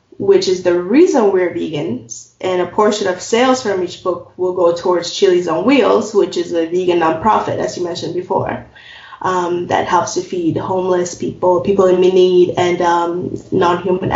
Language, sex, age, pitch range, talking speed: English, female, 20-39, 175-195 Hz, 180 wpm